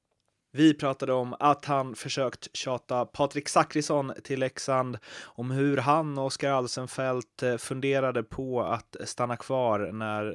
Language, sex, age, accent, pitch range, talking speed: Swedish, male, 20-39, native, 110-140 Hz, 135 wpm